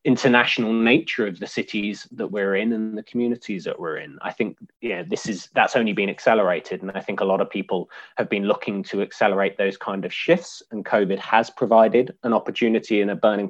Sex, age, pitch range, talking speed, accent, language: male, 20-39, 100-115 Hz, 215 wpm, British, English